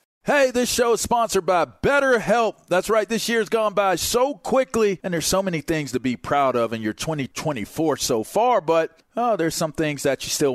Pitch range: 150-210 Hz